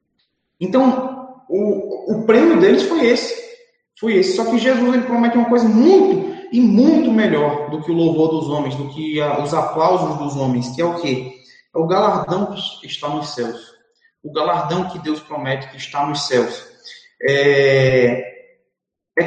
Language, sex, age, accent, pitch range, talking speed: Portuguese, male, 20-39, Brazilian, 150-220 Hz, 170 wpm